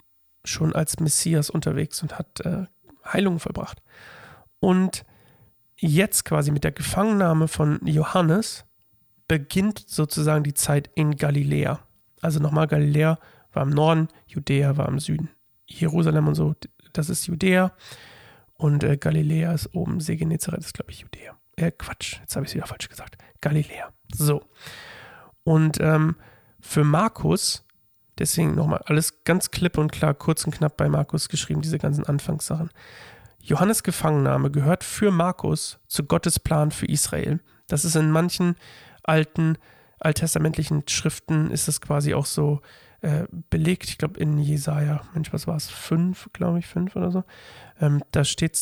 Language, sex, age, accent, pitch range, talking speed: German, male, 40-59, German, 145-165 Hz, 150 wpm